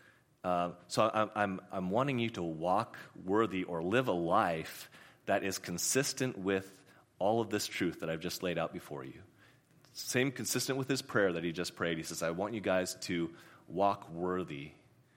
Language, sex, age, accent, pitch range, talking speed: English, male, 30-49, American, 85-110 Hz, 180 wpm